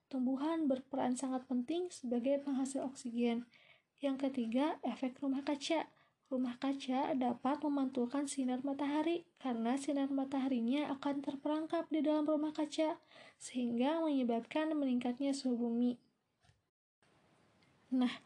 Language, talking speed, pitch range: Indonesian, 105 wpm, 250-290 Hz